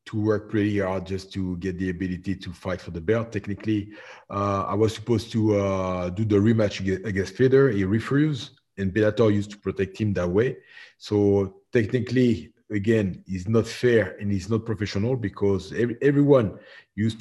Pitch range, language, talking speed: 100-115 Hz, English, 175 wpm